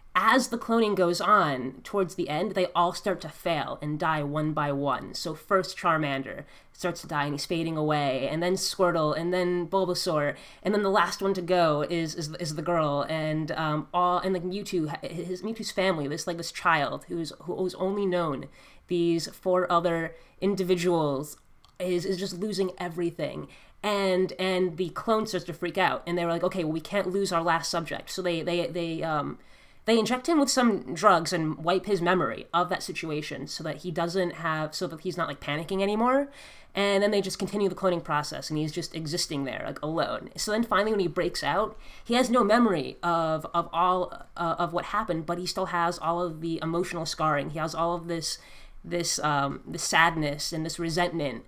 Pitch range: 160-190 Hz